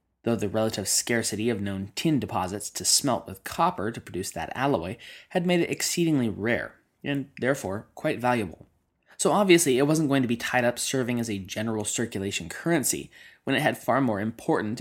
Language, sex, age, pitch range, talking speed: English, male, 20-39, 100-130 Hz, 185 wpm